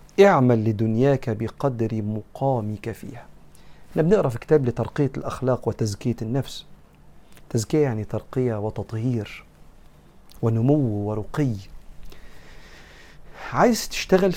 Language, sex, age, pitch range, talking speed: Arabic, male, 40-59, 115-155 Hz, 90 wpm